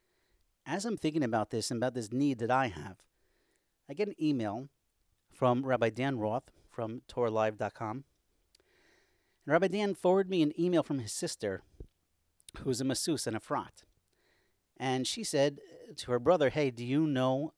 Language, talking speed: English, 165 wpm